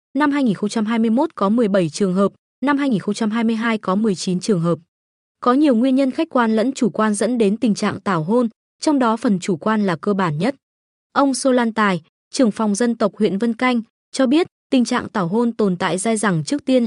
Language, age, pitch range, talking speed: Vietnamese, 20-39, 190-245 Hz, 210 wpm